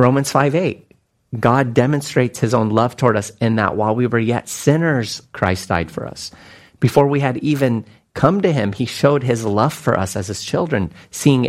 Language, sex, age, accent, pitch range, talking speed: English, male, 40-59, American, 110-135 Hz, 200 wpm